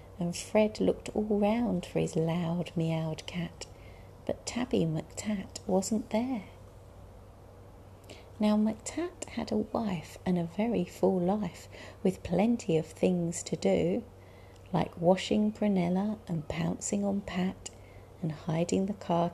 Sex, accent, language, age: female, British, English, 40-59